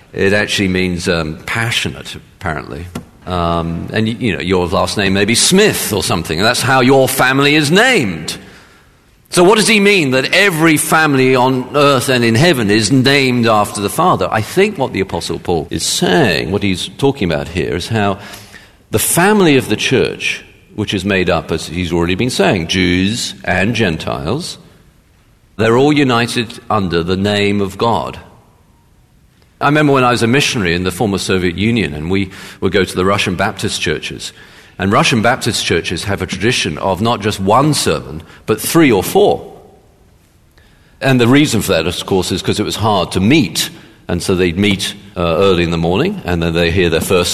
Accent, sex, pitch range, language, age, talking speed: British, male, 90-130 Hz, English, 50-69, 190 wpm